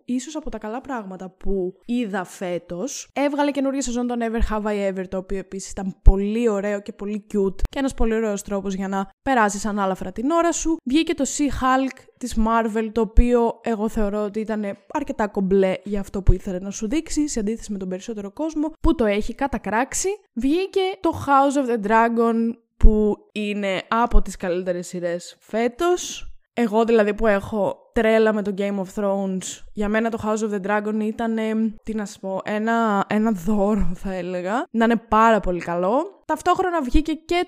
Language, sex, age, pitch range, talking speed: Greek, female, 20-39, 205-275 Hz, 185 wpm